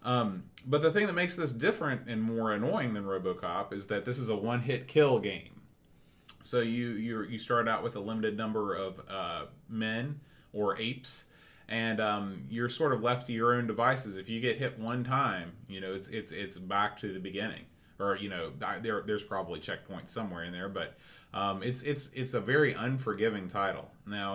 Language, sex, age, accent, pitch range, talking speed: English, male, 30-49, American, 100-120 Hz, 200 wpm